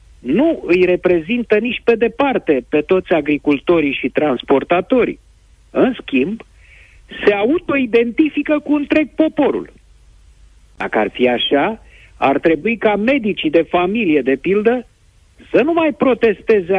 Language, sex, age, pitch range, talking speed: Romanian, male, 50-69, 165-265 Hz, 120 wpm